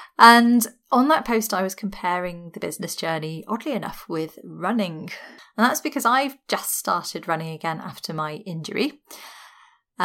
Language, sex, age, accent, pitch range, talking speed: English, female, 30-49, British, 165-220 Hz, 155 wpm